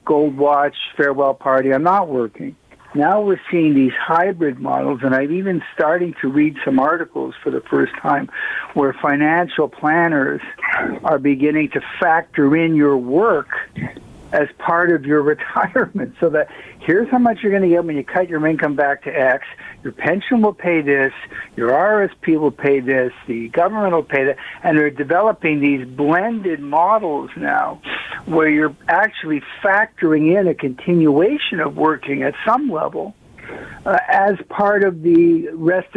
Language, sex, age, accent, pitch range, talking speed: English, male, 60-79, American, 140-170 Hz, 160 wpm